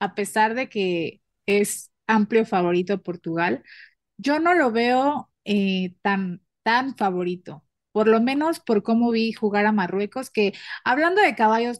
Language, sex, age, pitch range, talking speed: Spanish, female, 30-49, 205-245 Hz, 145 wpm